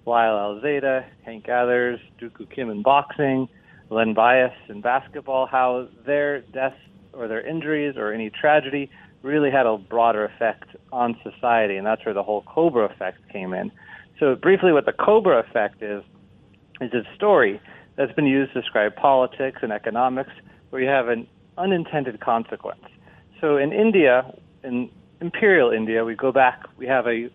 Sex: male